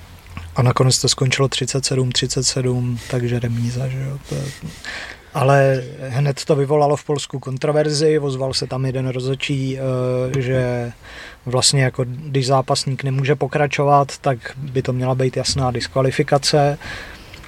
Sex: male